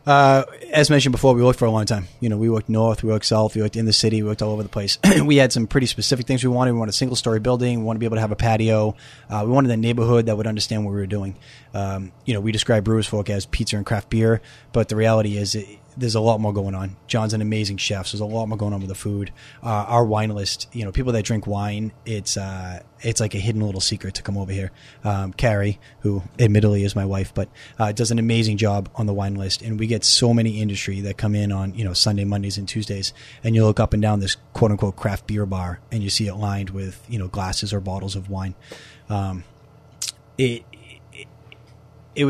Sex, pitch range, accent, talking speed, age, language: male, 100-115 Hz, American, 255 wpm, 20-39, English